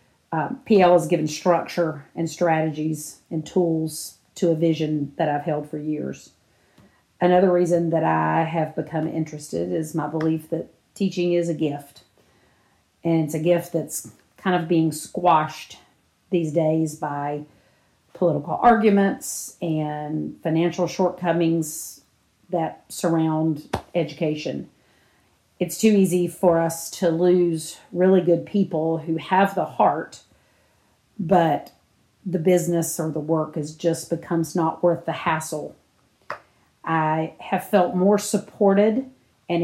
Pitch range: 160-175 Hz